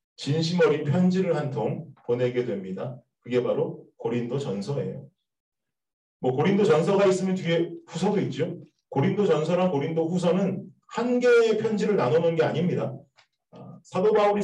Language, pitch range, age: Korean, 140-195 Hz, 40-59